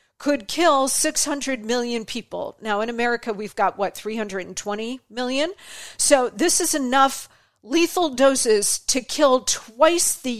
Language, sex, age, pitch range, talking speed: English, female, 40-59, 220-270 Hz, 135 wpm